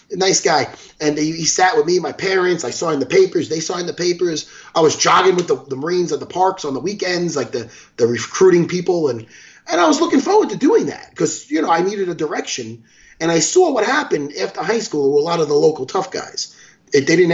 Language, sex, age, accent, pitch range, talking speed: English, male, 30-49, American, 140-205 Hz, 250 wpm